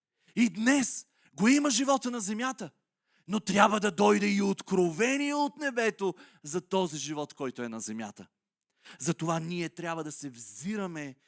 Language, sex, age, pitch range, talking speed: Bulgarian, male, 30-49, 165-250 Hz, 150 wpm